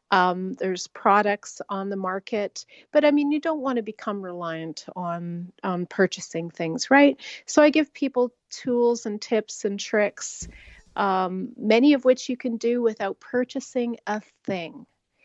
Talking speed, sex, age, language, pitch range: 155 wpm, female, 40-59, English, 195-250 Hz